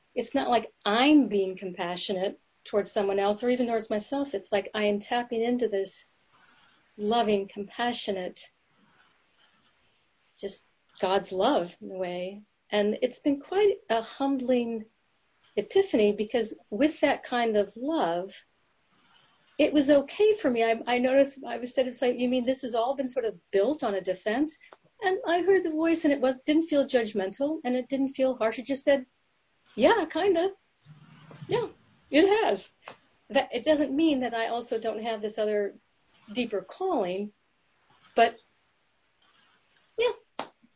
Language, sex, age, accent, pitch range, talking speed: English, female, 40-59, American, 200-275 Hz, 155 wpm